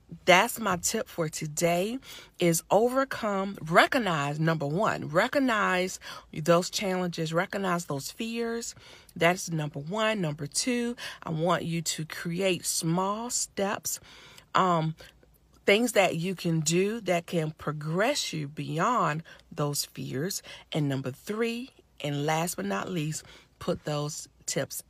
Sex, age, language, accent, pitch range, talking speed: female, 40-59, English, American, 155-220 Hz, 125 wpm